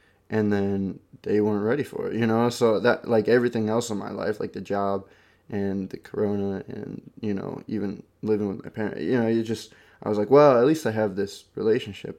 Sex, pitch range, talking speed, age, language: male, 100-115 Hz, 220 wpm, 20-39, English